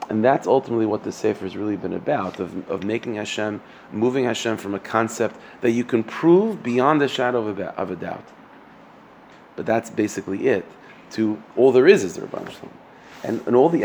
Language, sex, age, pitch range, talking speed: English, male, 30-49, 100-120 Hz, 200 wpm